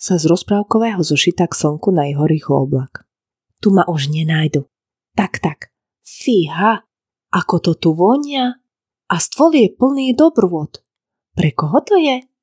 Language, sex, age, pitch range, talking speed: Slovak, female, 30-49, 155-215 Hz, 145 wpm